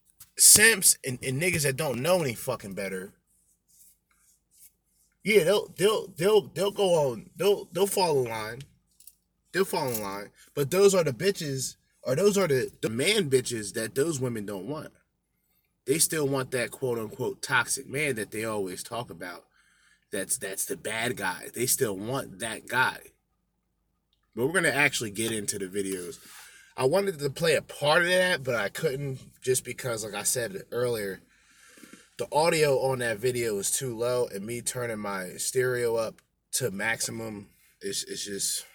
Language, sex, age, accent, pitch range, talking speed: English, male, 20-39, American, 110-160 Hz, 170 wpm